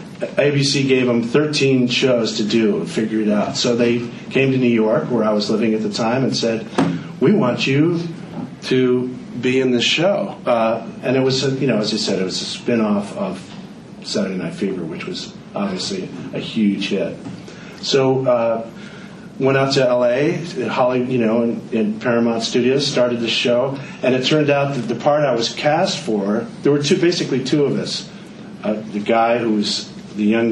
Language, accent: English, American